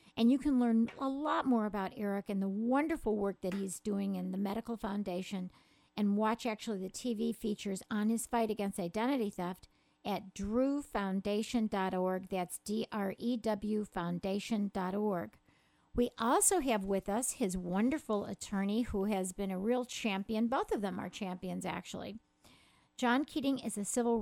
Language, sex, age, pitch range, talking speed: English, female, 50-69, 195-235 Hz, 155 wpm